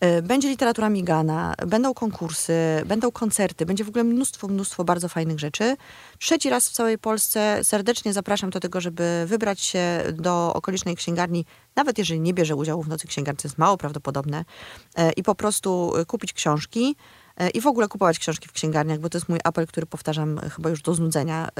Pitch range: 170-245 Hz